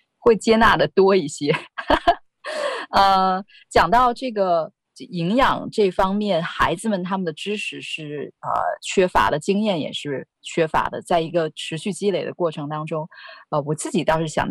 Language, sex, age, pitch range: Chinese, female, 20-39, 155-200 Hz